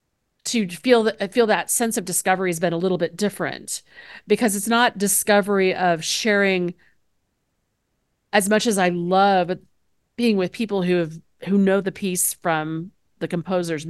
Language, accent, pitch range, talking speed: English, American, 175-205 Hz, 160 wpm